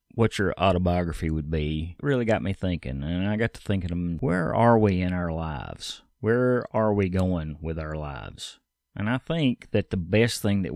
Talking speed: 195 wpm